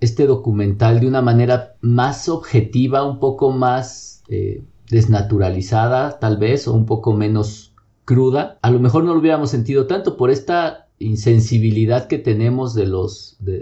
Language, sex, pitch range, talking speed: Spanish, male, 100-120 Hz, 155 wpm